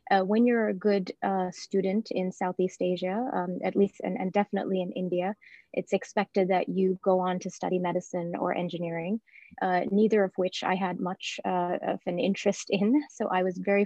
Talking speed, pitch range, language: 195 wpm, 180-200 Hz, English